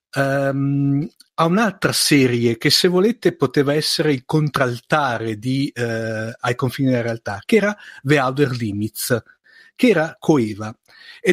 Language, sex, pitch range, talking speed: Italian, male, 120-145 Hz, 140 wpm